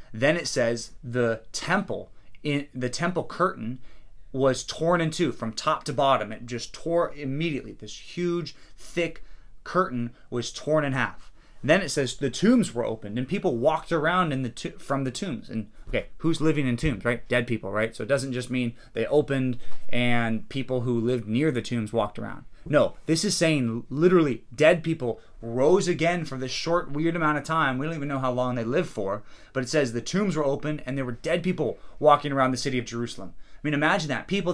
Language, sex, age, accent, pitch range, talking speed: English, male, 30-49, American, 120-170 Hz, 210 wpm